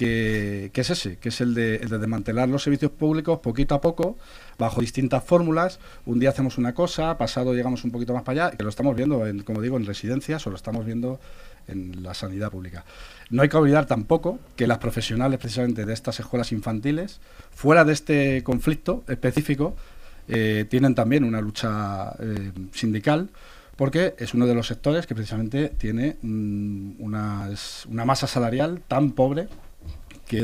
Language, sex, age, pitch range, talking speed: Spanish, male, 40-59, 105-140 Hz, 180 wpm